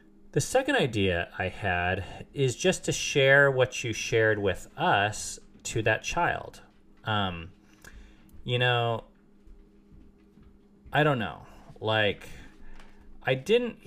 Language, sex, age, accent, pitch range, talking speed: English, male, 30-49, American, 100-140 Hz, 115 wpm